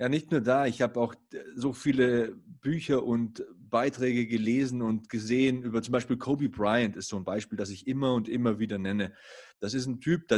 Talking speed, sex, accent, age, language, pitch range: 210 wpm, male, German, 20-39, German, 110-135 Hz